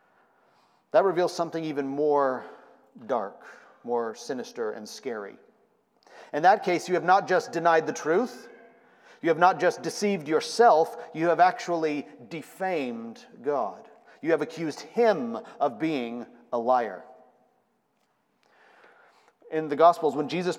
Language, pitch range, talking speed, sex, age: English, 150-230 Hz, 130 wpm, male, 40-59